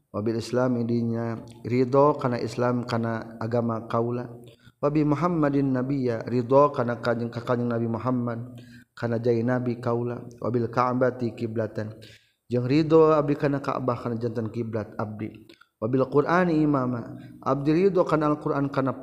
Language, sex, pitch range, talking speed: Indonesian, male, 115-135 Hz, 145 wpm